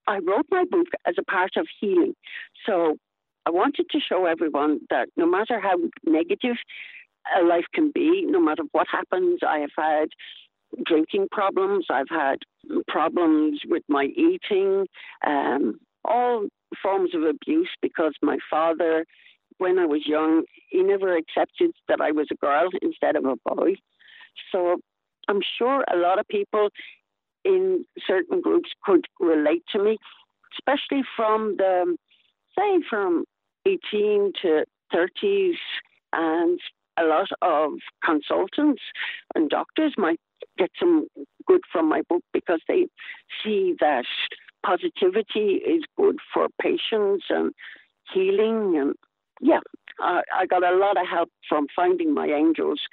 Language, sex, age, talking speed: English, female, 60-79, 140 wpm